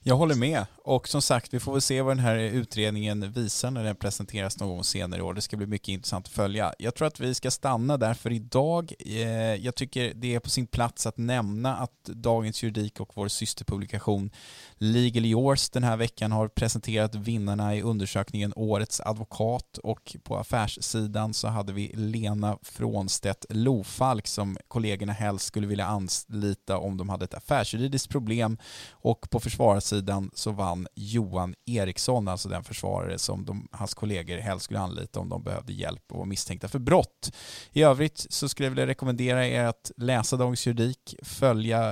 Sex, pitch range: male, 100-120 Hz